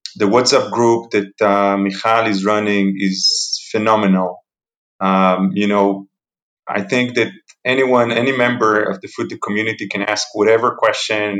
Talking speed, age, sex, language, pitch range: 140 wpm, 30-49, male, English, 100-120 Hz